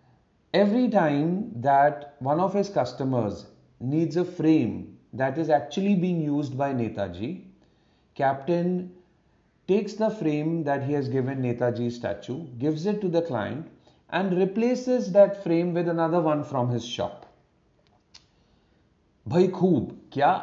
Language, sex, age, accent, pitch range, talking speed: Hindi, male, 40-59, native, 125-175 Hz, 130 wpm